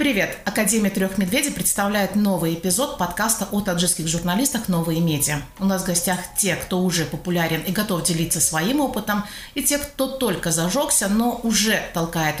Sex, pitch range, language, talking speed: female, 170-220 Hz, Russian, 165 wpm